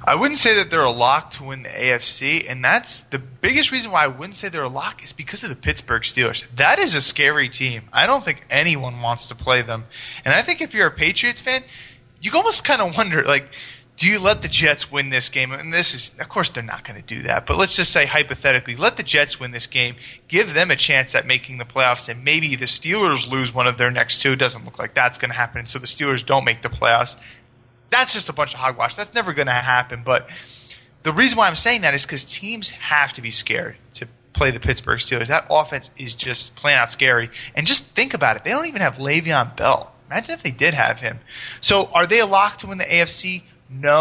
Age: 20-39